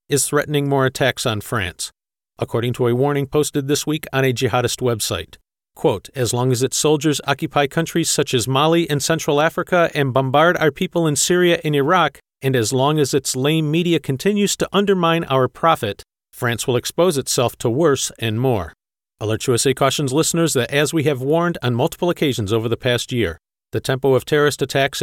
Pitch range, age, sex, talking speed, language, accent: 125-160 Hz, 40-59, male, 190 wpm, English, American